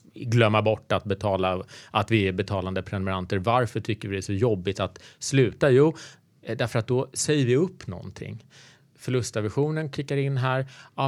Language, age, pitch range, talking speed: Swedish, 30-49, 105-135 Hz, 170 wpm